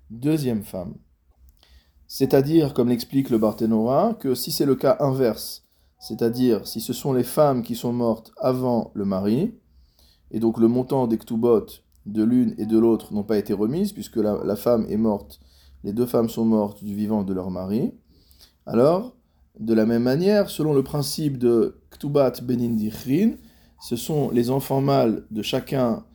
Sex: male